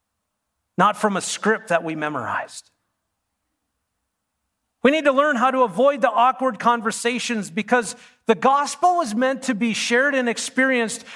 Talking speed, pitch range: 145 wpm, 195-265 Hz